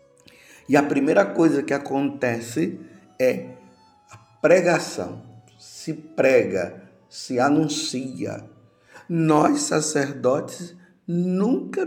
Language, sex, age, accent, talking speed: Portuguese, male, 50-69, Brazilian, 80 wpm